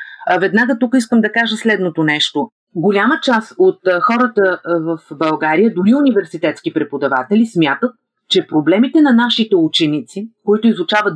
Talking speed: 135 wpm